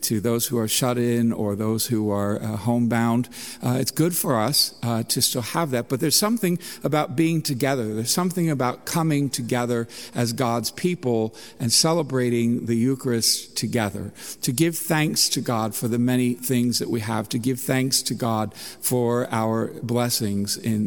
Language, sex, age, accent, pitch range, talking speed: English, male, 50-69, American, 120-155 Hz, 180 wpm